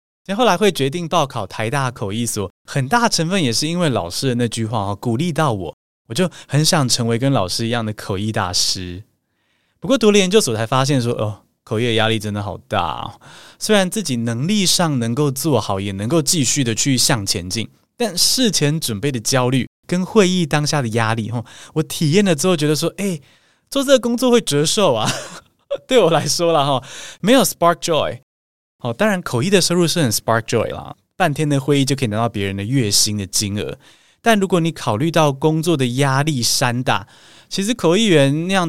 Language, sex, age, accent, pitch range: Chinese, male, 20-39, native, 115-165 Hz